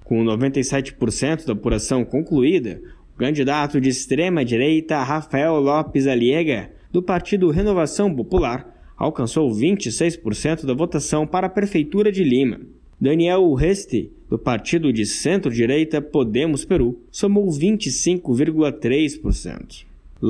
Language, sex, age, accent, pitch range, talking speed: Portuguese, male, 20-39, Brazilian, 130-175 Hz, 100 wpm